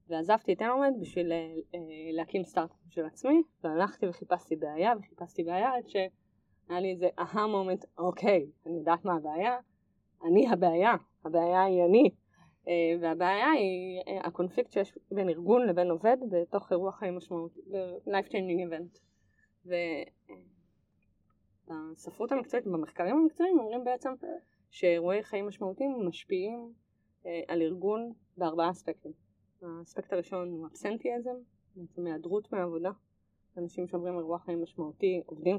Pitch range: 165-205 Hz